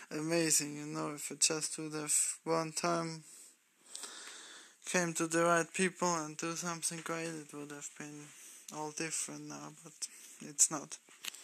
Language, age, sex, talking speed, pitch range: English, 20-39, male, 150 wpm, 150-175 Hz